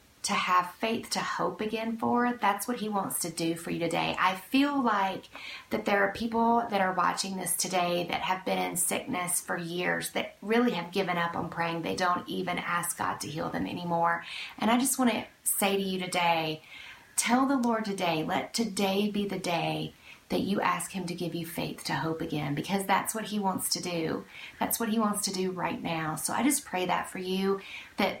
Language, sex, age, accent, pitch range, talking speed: English, female, 40-59, American, 175-210 Hz, 220 wpm